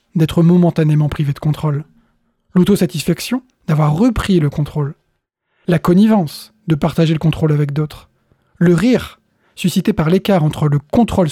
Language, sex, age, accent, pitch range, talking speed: French, male, 20-39, French, 155-200 Hz, 140 wpm